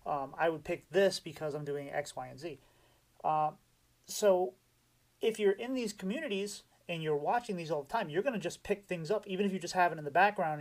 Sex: male